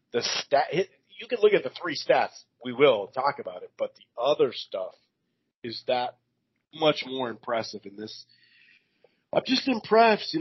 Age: 30-49